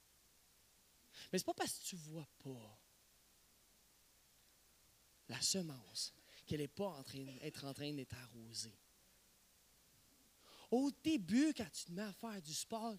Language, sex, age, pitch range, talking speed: French, male, 30-49, 130-220 Hz, 145 wpm